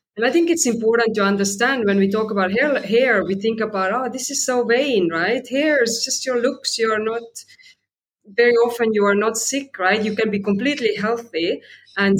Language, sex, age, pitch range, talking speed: English, female, 20-39, 190-235 Hz, 210 wpm